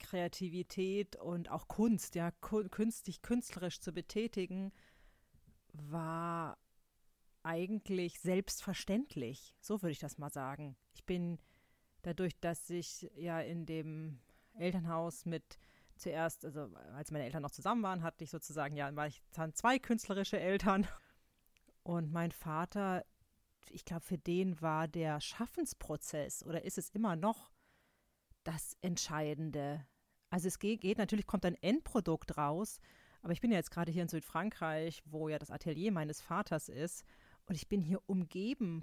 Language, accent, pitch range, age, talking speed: German, German, 160-205 Hz, 30-49, 140 wpm